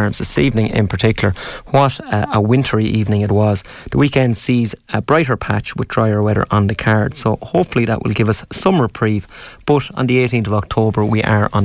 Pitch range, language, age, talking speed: 105-125 Hz, English, 30-49, 205 wpm